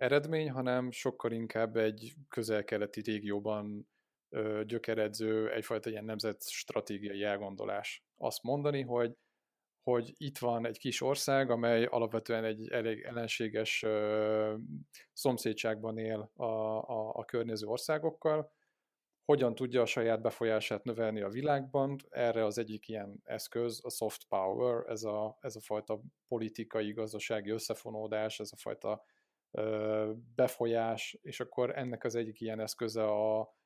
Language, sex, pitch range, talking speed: Hungarian, male, 110-125 Hz, 120 wpm